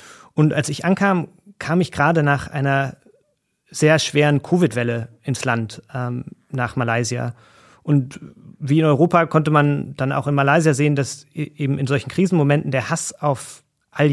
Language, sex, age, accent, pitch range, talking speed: German, male, 30-49, German, 130-155 Hz, 155 wpm